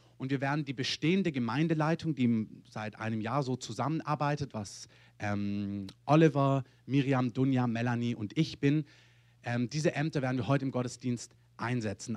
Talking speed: 150 wpm